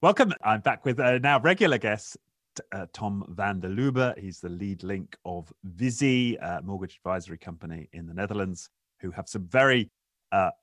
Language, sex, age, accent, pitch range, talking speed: English, male, 30-49, British, 90-135 Hz, 170 wpm